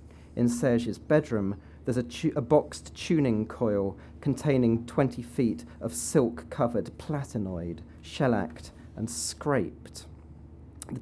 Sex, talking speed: male, 105 wpm